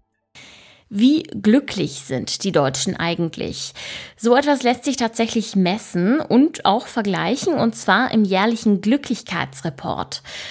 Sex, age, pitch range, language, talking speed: female, 20-39, 190-245 Hz, German, 115 wpm